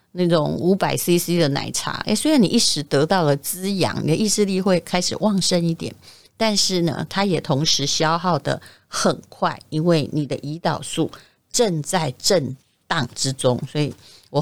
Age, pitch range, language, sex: 30-49, 150-195 Hz, Chinese, female